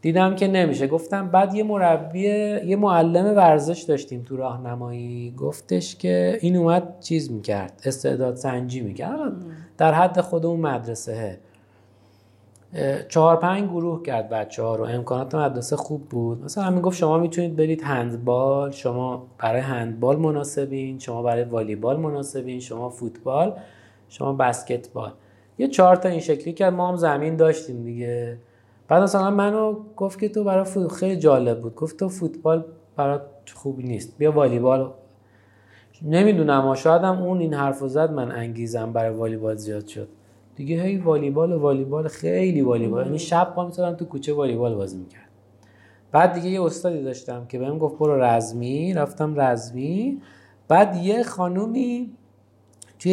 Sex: male